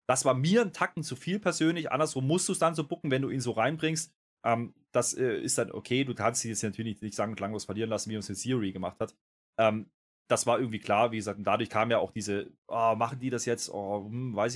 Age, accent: 20-39, German